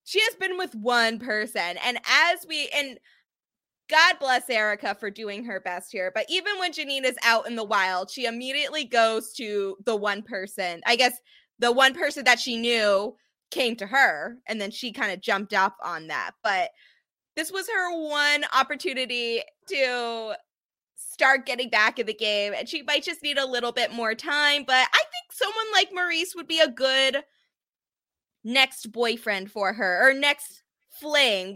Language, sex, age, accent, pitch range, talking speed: English, female, 20-39, American, 225-310 Hz, 180 wpm